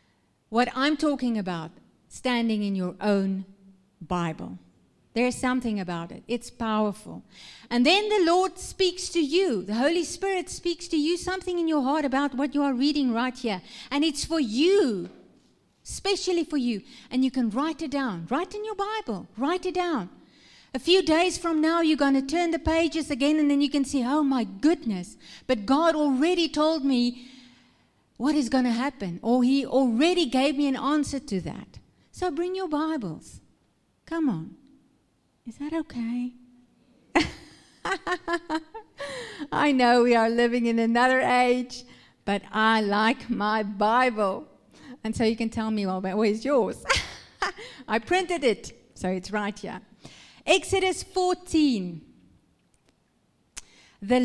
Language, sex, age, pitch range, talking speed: English, female, 50-69, 225-315 Hz, 155 wpm